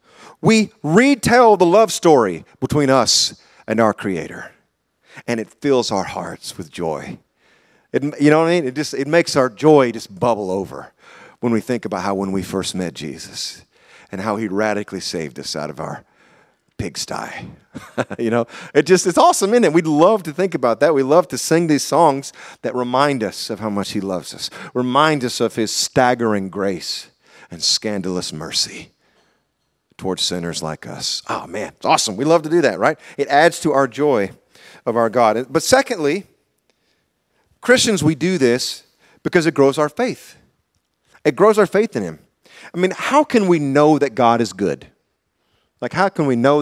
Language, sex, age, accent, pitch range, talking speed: English, male, 40-59, American, 110-170 Hz, 185 wpm